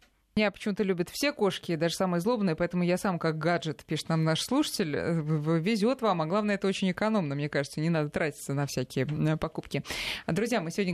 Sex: female